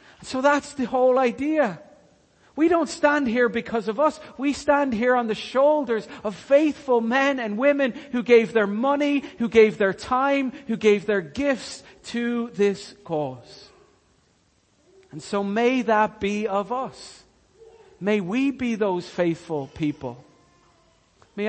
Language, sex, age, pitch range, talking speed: English, male, 40-59, 150-240 Hz, 150 wpm